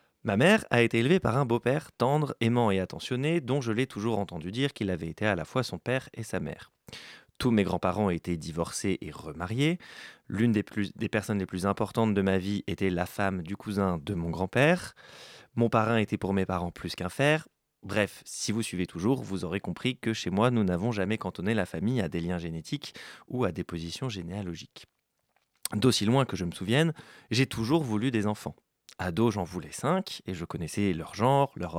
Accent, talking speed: French, 210 wpm